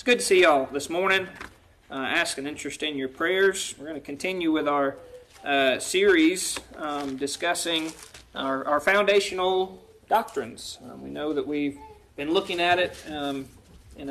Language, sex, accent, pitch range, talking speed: English, male, American, 145-210 Hz, 170 wpm